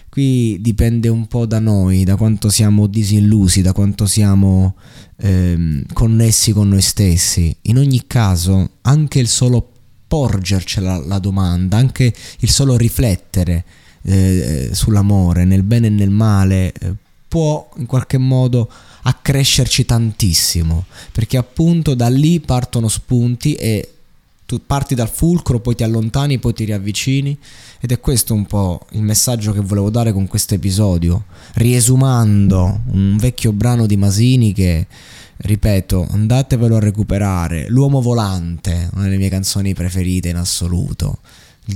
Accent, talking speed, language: native, 140 wpm, Italian